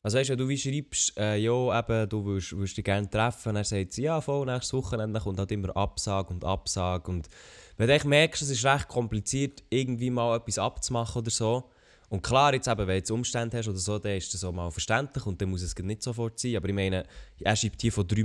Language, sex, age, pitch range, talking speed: German, male, 20-39, 105-130 Hz, 245 wpm